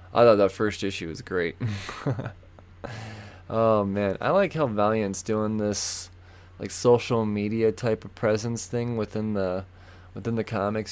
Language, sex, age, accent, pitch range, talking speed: English, male, 20-39, American, 90-115 Hz, 150 wpm